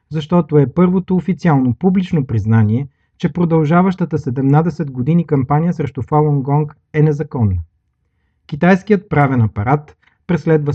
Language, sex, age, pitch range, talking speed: Bulgarian, male, 40-59, 110-155 Hz, 105 wpm